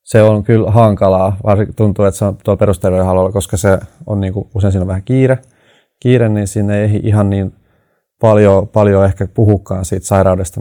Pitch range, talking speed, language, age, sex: 95-110 Hz, 185 wpm, Finnish, 30-49, male